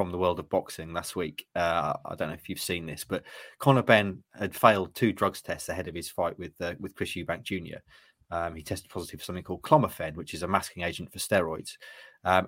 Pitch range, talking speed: 95-110 Hz, 235 wpm